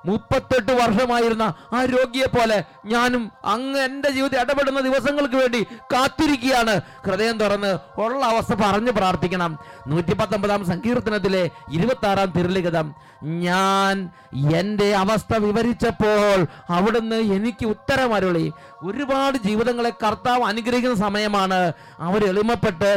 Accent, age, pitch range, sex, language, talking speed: Indian, 30-49, 185-235 Hz, male, English, 90 wpm